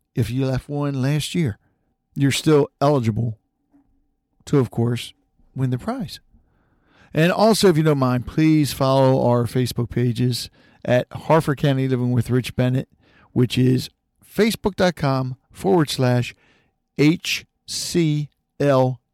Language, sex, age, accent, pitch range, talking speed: English, male, 50-69, American, 120-145 Hz, 120 wpm